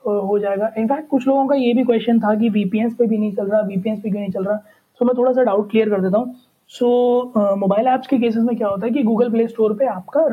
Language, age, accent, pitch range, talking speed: Hindi, 20-39, native, 205-255 Hz, 280 wpm